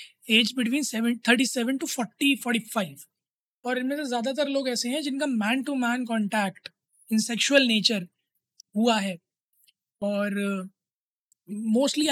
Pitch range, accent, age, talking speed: 220-255 Hz, native, 20-39, 140 wpm